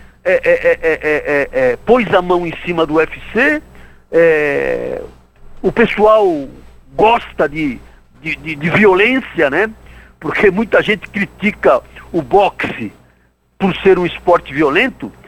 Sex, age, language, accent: male, 60-79, Portuguese, Brazilian